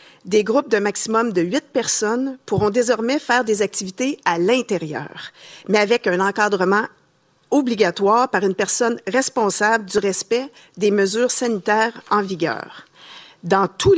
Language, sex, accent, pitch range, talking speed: French, female, Canadian, 195-240 Hz, 135 wpm